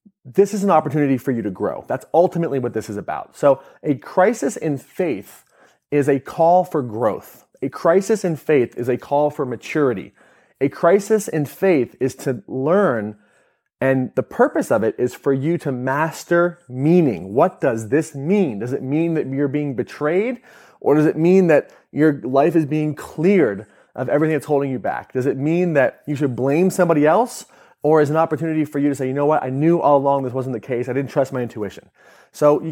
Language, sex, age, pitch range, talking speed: English, male, 30-49, 130-170 Hz, 205 wpm